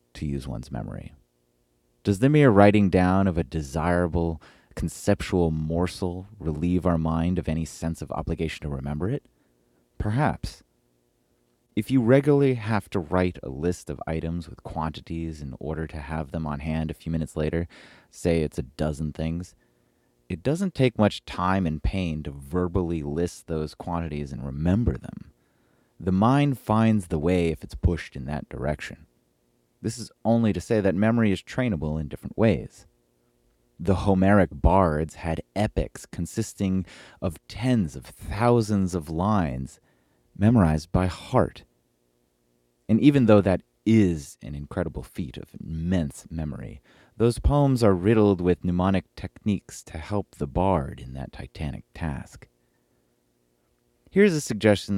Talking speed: 150 wpm